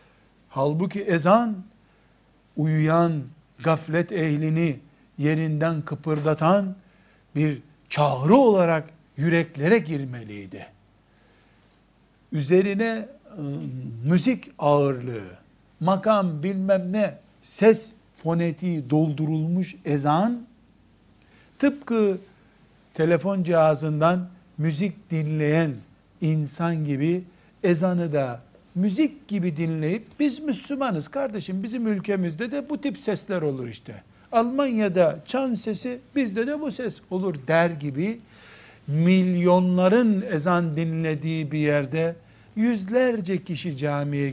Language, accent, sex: Turkish, native, male